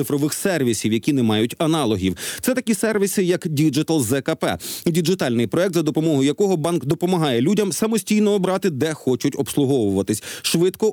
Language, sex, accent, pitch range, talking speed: Ukrainian, male, native, 140-190 Hz, 145 wpm